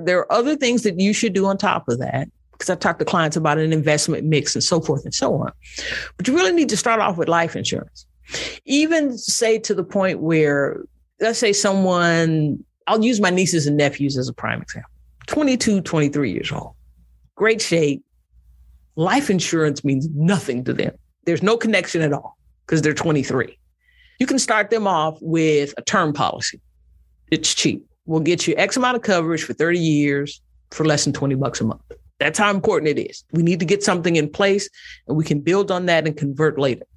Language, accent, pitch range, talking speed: English, American, 145-205 Hz, 205 wpm